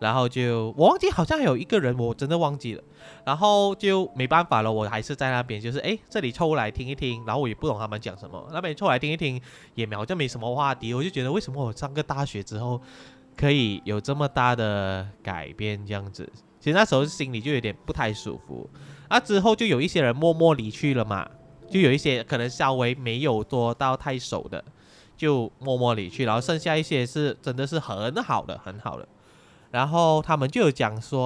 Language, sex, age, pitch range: Chinese, male, 20-39, 110-155 Hz